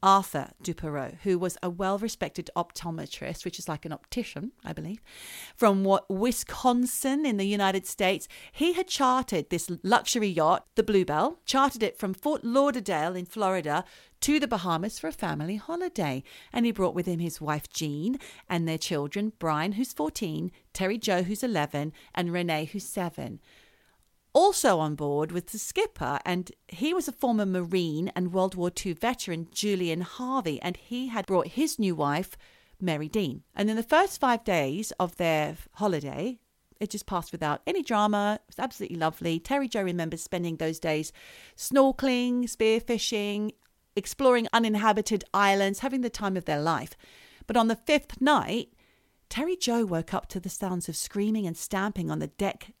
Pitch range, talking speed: 170-235 Hz, 165 wpm